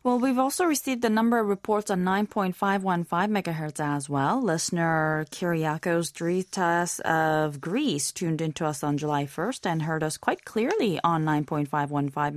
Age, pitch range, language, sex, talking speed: 20-39, 155-205 Hz, English, female, 150 wpm